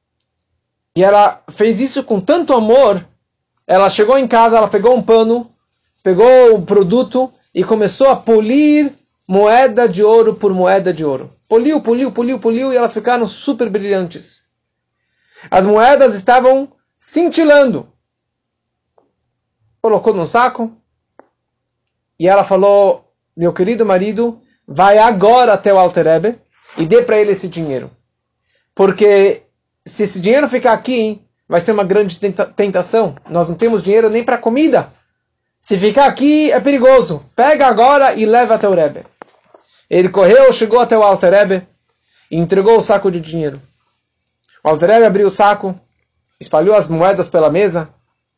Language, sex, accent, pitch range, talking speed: Portuguese, male, Brazilian, 180-235 Hz, 145 wpm